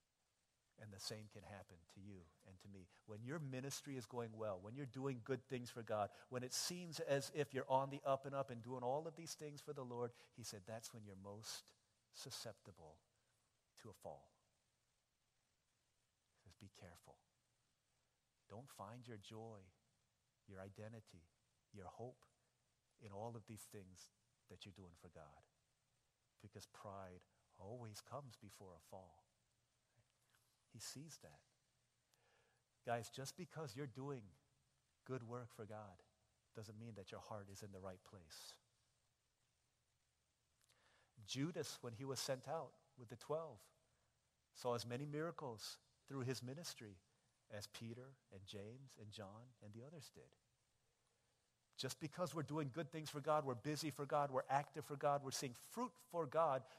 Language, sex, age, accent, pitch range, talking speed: English, male, 50-69, American, 105-135 Hz, 160 wpm